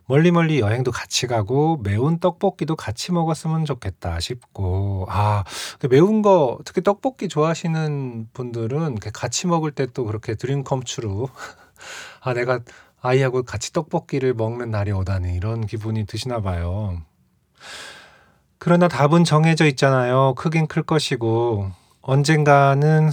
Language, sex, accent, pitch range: Korean, male, native, 105-145 Hz